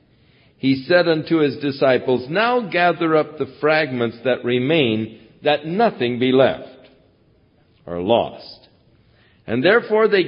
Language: English